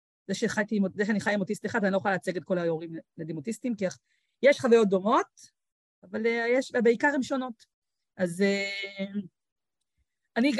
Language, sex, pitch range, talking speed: Hebrew, female, 190-230 Hz, 155 wpm